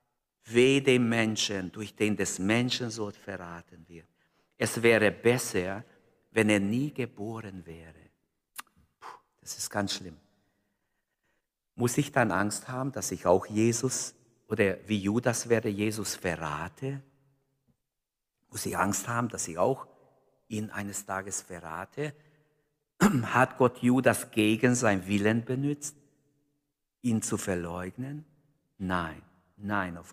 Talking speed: 125 wpm